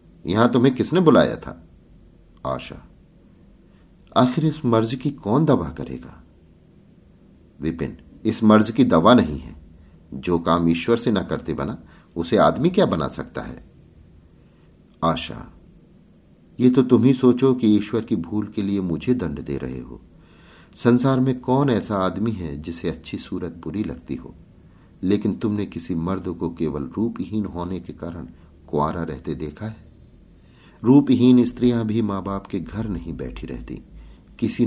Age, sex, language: 50-69, male, Hindi